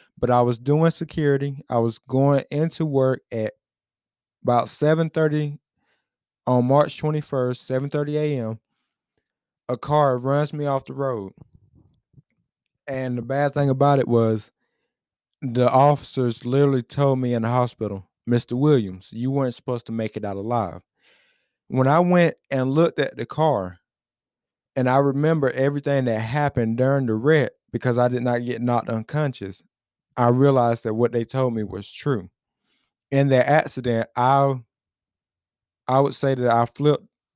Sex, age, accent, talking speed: male, 20-39, American, 150 wpm